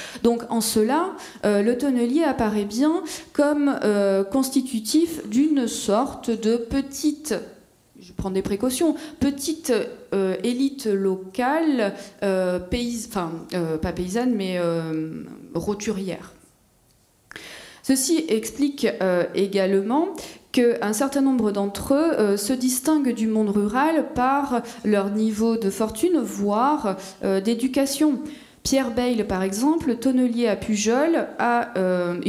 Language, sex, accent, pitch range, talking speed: French, female, French, 200-270 Hz, 115 wpm